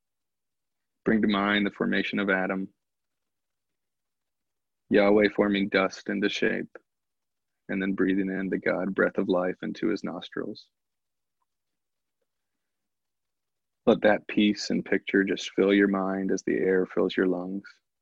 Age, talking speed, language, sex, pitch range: 20-39, 130 wpm, English, male, 95-105 Hz